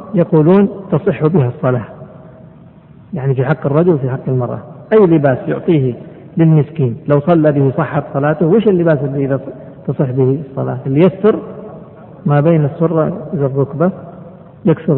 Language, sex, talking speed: Arabic, male, 135 wpm